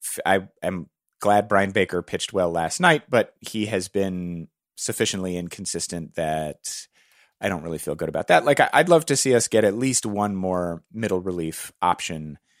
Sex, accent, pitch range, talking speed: male, American, 95-135 Hz, 175 wpm